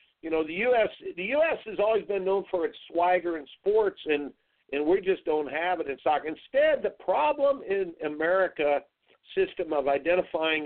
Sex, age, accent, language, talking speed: male, 50-69, American, English, 180 wpm